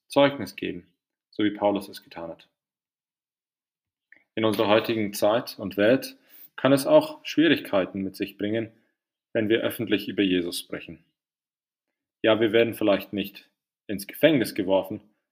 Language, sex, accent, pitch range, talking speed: English, male, German, 100-130 Hz, 135 wpm